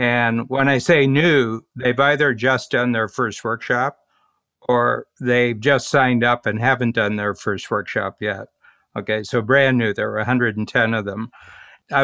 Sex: male